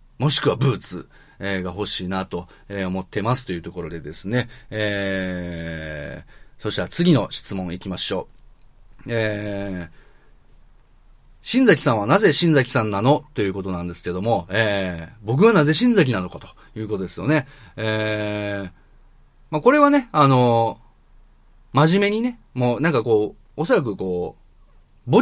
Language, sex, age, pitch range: Japanese, male, 30-49, 95-150 Hz